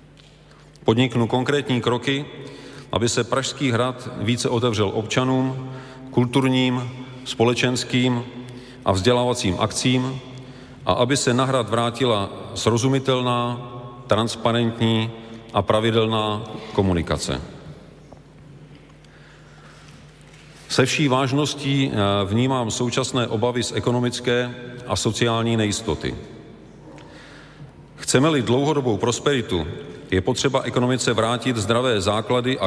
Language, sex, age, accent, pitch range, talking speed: Czech, male, 40-59, native, 115-130 Hz, 85 wpm